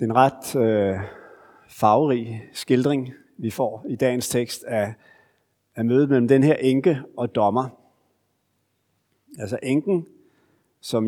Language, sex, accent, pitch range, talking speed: Danish, male, native, 110-150 Hz, 130 wpm